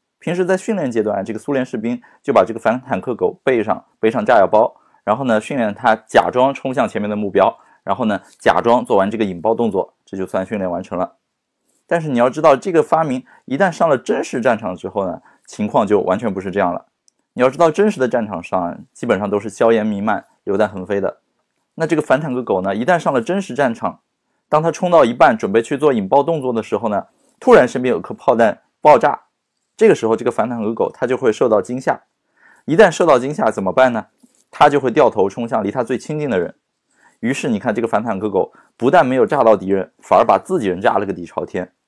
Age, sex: 20-39, male